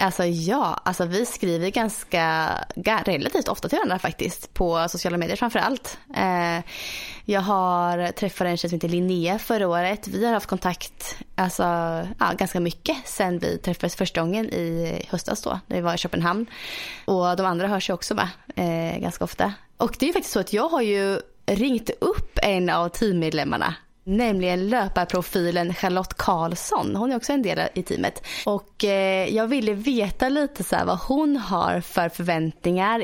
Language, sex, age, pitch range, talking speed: Swedish, female, 20-39, 175-215 Hz, 170 wpm